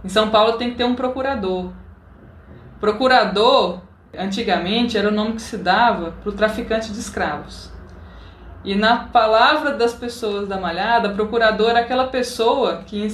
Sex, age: female, 20-39